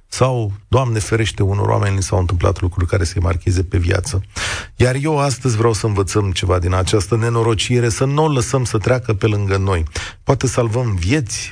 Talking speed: 180 wpm